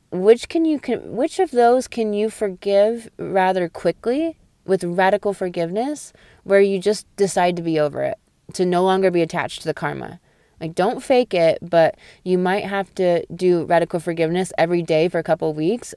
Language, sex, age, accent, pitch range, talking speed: English, female, 20-39, American, 160-195 Hz, 185 wpm